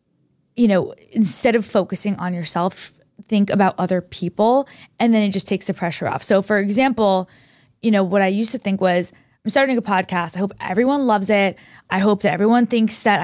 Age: 20-39